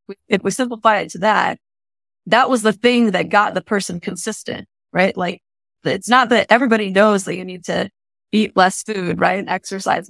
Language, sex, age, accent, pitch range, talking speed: English, female, 20-39, American, 180-205 Hz, 190 wpm